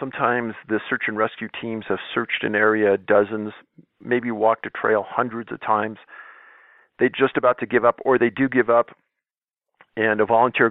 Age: 50-69